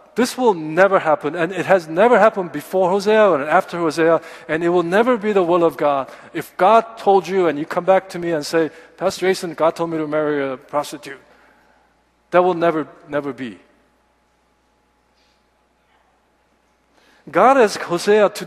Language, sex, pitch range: Korean, male, 160-210 Hz